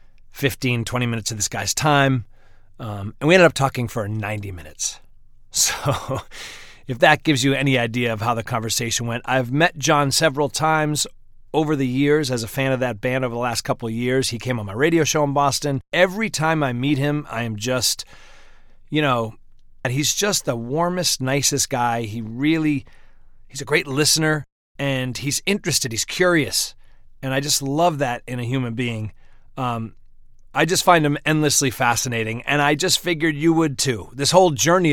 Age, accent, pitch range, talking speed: 30-49, American, 120-150 Hz, 185 wpm